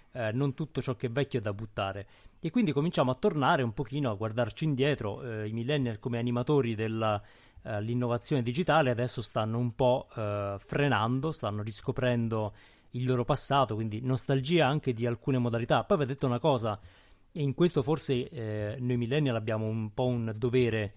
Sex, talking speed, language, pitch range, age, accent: male, 180 wpm, Italian, 110-140 Hz, 30-49, native